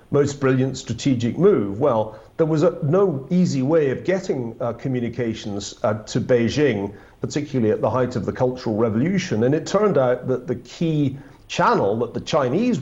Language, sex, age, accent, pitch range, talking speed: English, male, 50-69, British, 120-155 Hz, 170 wpm